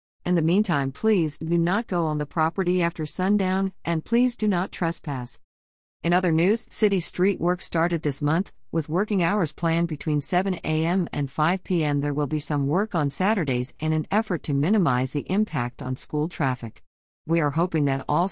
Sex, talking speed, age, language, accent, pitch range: female, 190 wpm, 50-69, English, American, 145-185 Hz